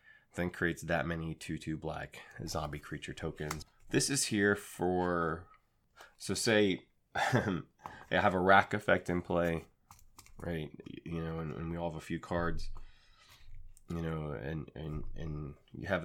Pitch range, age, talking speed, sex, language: 80-100 Hz, 20-39, 150 wpm, male, English